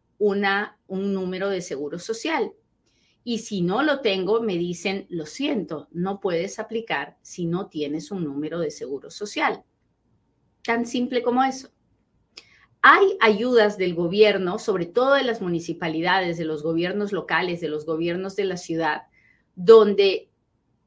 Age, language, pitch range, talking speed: 30-49, Spanish, 170-225 Hz, 145 wpm